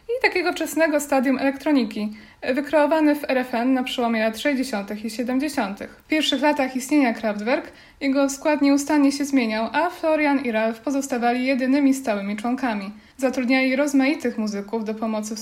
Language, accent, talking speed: Polish, native, 150 wpm